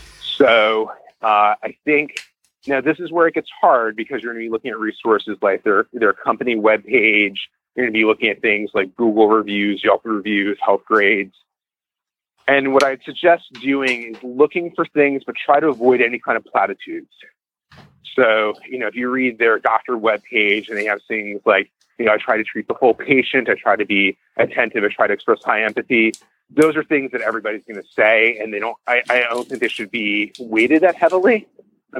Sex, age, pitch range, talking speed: male, 30-49, 110-150 Hz, 210 wpm